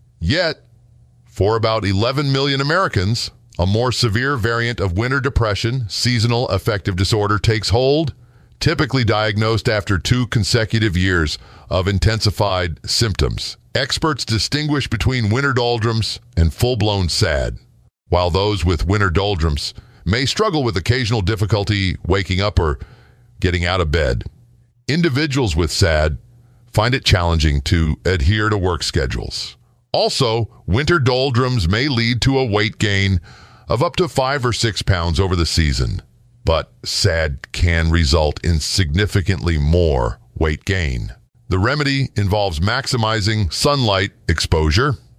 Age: 50-69